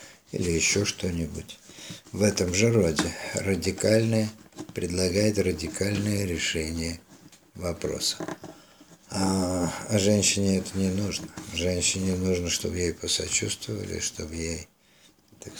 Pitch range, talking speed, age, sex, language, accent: 85-105 Hz, 100 wpm, 50-69, male, Russian, native